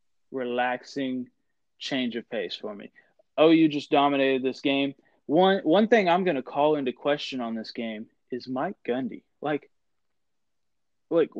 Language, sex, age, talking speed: English, male, 20-39, 155 wpm